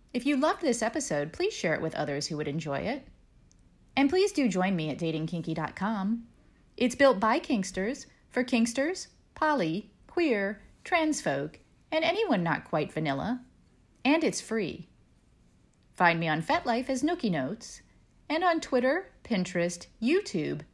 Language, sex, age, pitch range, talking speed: English, female, 30-49, 175-270 Hz, 150 wpm